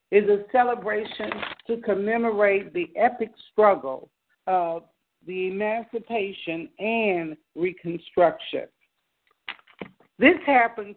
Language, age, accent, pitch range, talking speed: English, 60-79, American, 165-220 Hz, 80 wpm